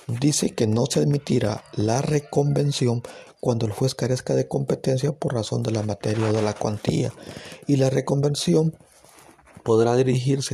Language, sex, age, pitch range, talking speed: Spanish, male, 50-69, 115-140 Hz, 155 wpm